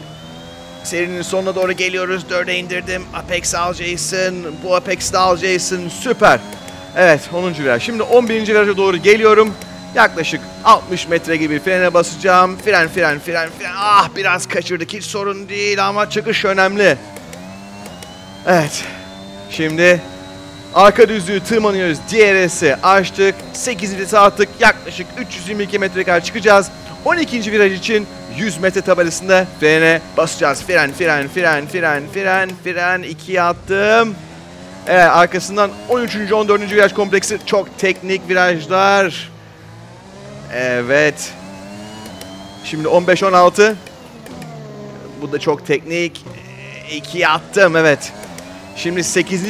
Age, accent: 30-49, native